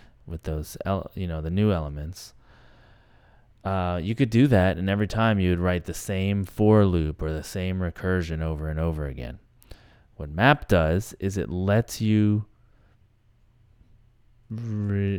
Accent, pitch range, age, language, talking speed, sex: American, 85-105 Hz, 30-49, English, 150 wpm, male